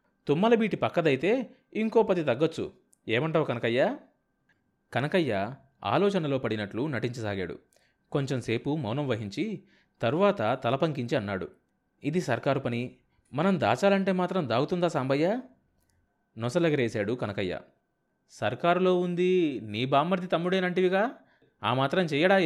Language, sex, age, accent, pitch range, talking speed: Telugu, male, 30-49, native, 120-180 Hz, 95 wpm